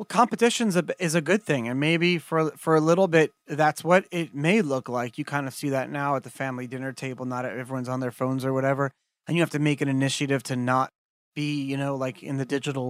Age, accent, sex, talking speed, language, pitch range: 30-49, American, male, 255 wpm, English, 135-175 Hz